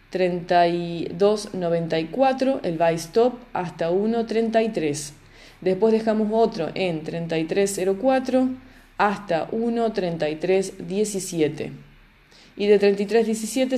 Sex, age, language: female, 20-39, English